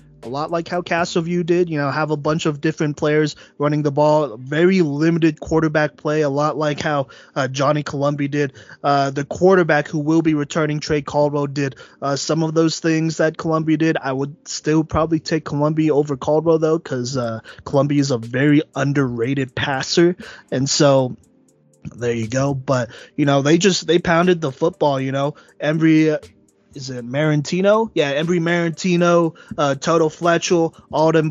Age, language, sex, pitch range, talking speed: 20-39, English, male, 135-160 Hz, 175 wpm